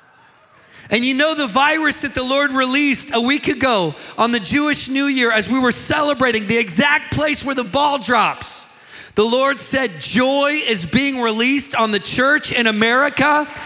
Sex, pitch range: male, 190-275 Hz